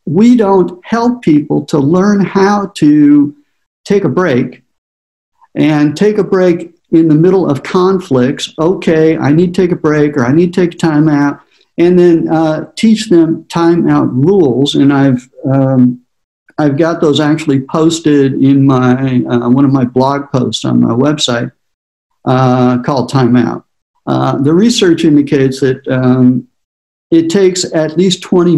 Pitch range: 135-170 Hz